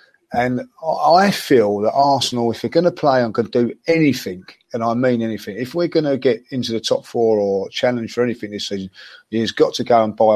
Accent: British